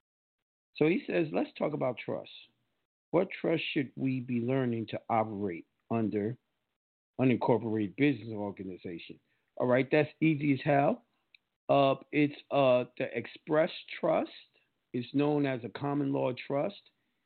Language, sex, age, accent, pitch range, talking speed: English, male, 50-69, American, 115-140 Hz, 130 wpm